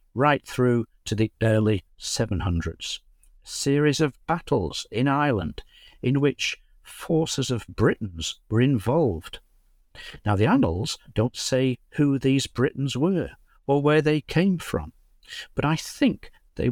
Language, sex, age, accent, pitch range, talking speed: English, male, 60-79, British, 100-135 Hz, 130 wpm